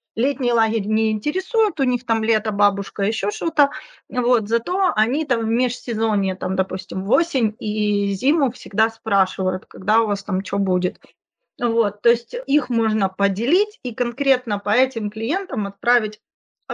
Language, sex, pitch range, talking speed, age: Ukrainian, female, 200-245 Hz, 150 wpm, 30-49